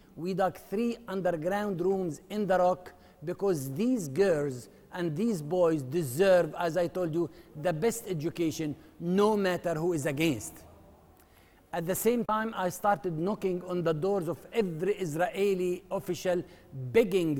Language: English